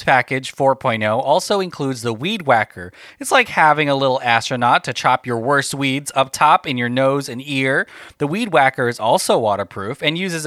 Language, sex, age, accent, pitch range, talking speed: English, male, 30-49, American, 120-165 Hz, 190 wpm